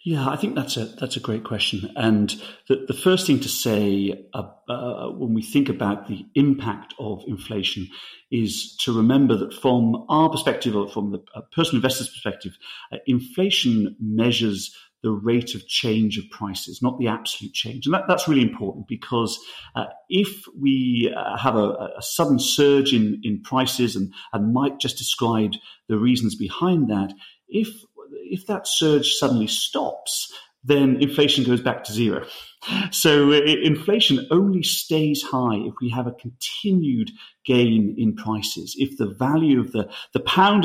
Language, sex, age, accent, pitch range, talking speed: English, male, 50-69, British, 110-145 Hz, 165 wpm